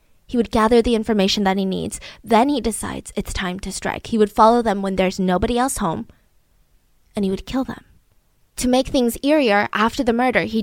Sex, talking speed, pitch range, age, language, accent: female, 210 wpm, 215-290 Hz, 10-29, English, American